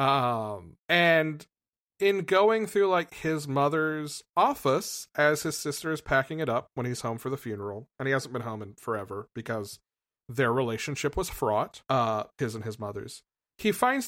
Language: English